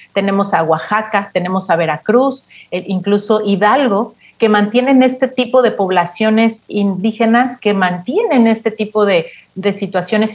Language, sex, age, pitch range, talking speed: Spanish, female, 40-59, 190-225 Hz, 130 wpm